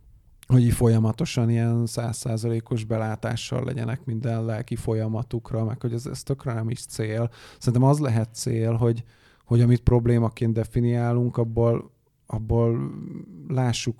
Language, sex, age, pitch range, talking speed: Hungarian, male, 20-39, 115-130 Hz, 115 wpm